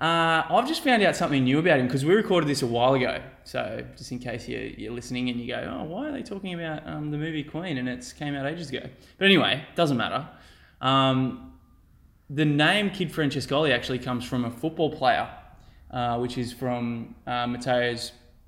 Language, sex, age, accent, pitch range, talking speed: English, male, 20-39, Australian, 115-135 Hz, 210 wpm